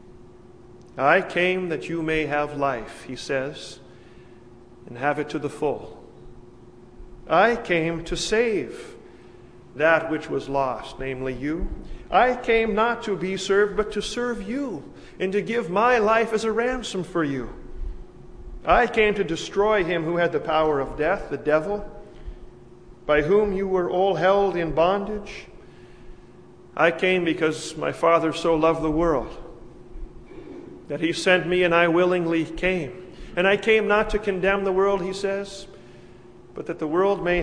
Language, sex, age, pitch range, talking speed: English, male, 40-59, 140-200 Hz, 155 wpm